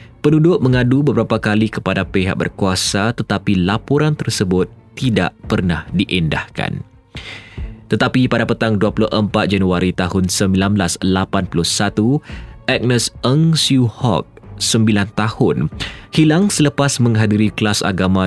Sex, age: male, 20-39